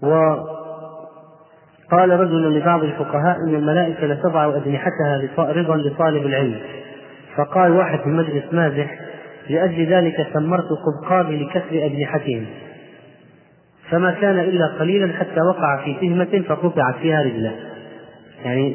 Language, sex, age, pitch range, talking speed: Arabic, male, 30-49, 145-165 Hz, 110 wpm